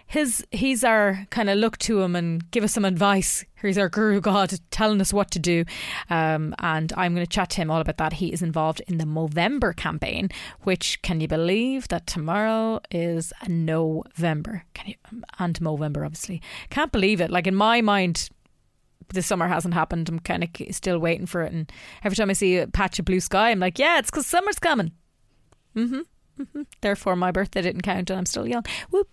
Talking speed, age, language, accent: 205 wpm, 30-49, English, Irish